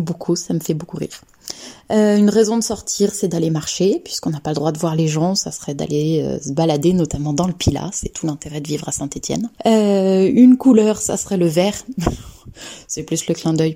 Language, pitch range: French, 165-205 Hz